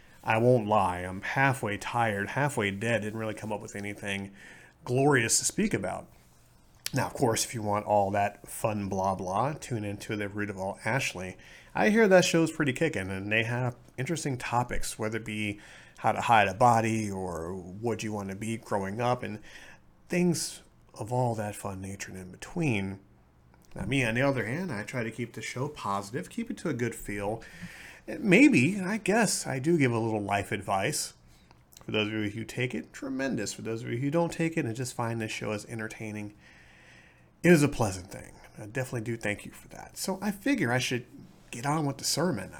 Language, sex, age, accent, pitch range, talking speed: English, male, 30-49, American, 100-135 Hz, 205 wpm